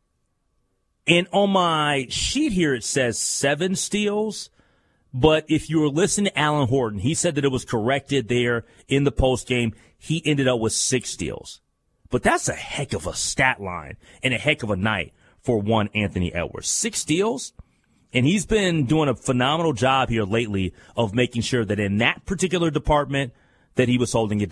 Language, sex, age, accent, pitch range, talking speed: English, male, 30-49, American, 110-150 Hz, 185 wpm